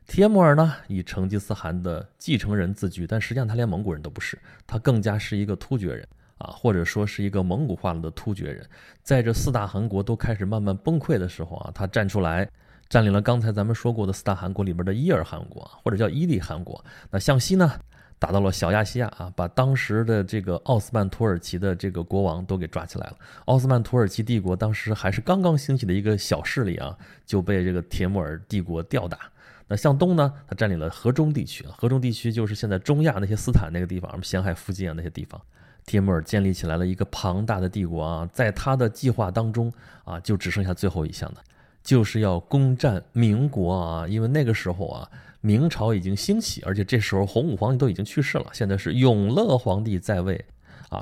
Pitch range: 95-120 Hz